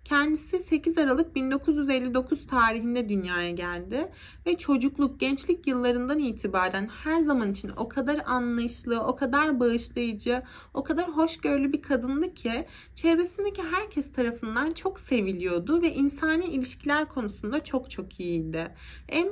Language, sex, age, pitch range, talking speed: Turkish, female, 30-49, 215-305 Hz, 125 wpm